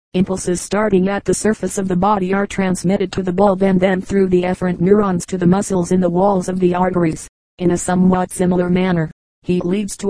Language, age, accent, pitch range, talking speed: English, 40-59, American, 175-195 Hz, 215 wpm